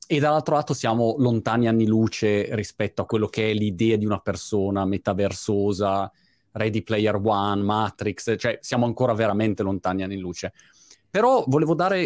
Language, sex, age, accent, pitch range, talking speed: Italian, male, 30-49, native, 100-130 Hz, 155 wpm